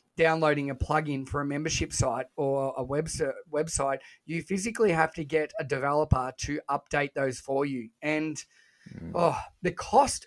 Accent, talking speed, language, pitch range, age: Australian, 160 wpm, English, 140-160 Hz, 20-39